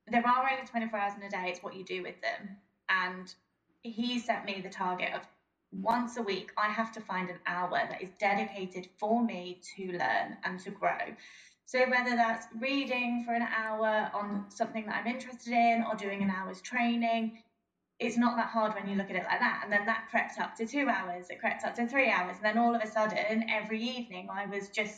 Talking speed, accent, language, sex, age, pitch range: 225 wpm, British, English, female, 20-39, 195-230 Hz